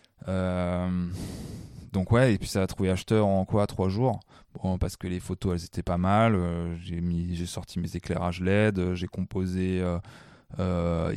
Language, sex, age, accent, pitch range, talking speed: French, male, 20-39, French, 90-105 Hz, 175 wpm